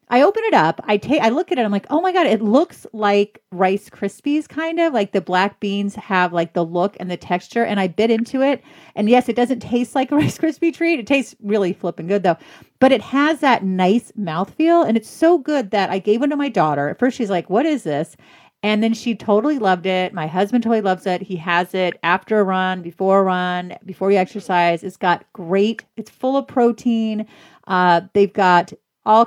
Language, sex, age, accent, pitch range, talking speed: English, female, 40-59, American, 180-225 Hz, 230 wpm